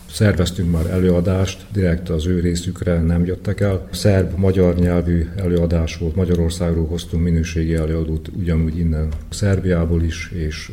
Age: 50-69